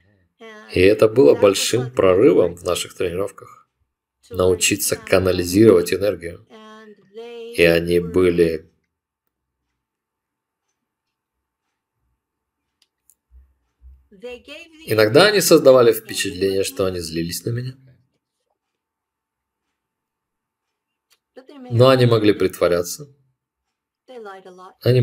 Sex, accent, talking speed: male, native, 65 wpm